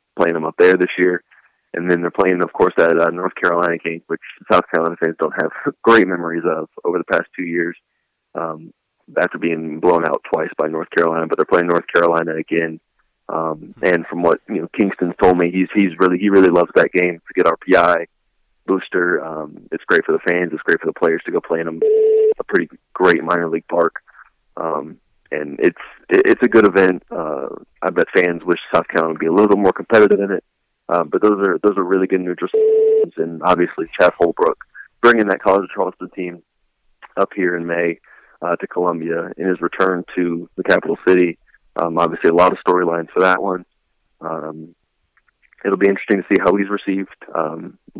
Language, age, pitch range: English, 20-39, 85-105 Hz